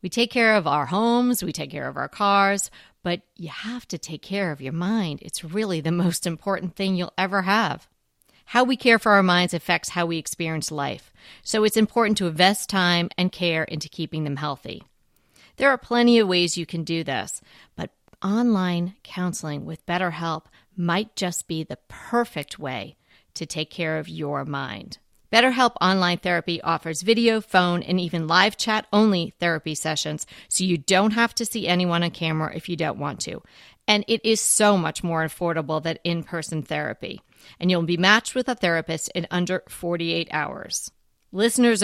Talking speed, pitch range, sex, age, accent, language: 180 wpm, 165-205 Hz, female, 40-59, American, English